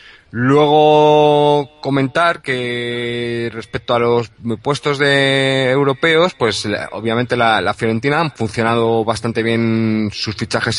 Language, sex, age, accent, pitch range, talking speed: Spanish, male, 30-49, Spanish, 105-130 Hz, 110 wpm